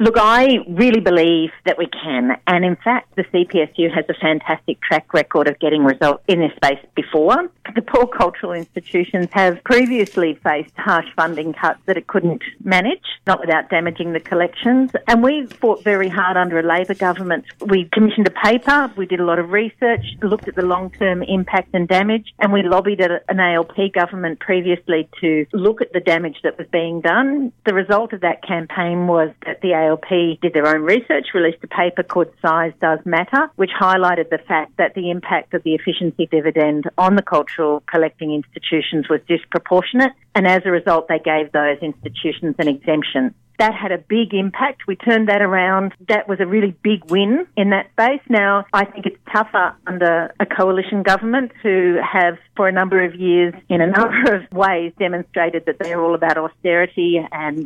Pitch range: 165-200 Hz